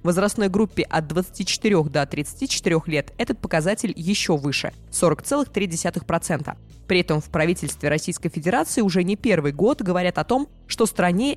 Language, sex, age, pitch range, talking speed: Russian, female, 20-39, 160-200 Hz, 150 wpm